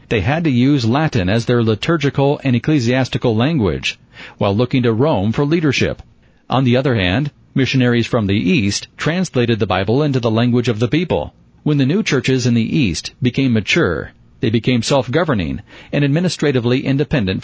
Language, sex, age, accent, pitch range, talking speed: English, male, 40-59, American, 115-145 Hz, 170 wpm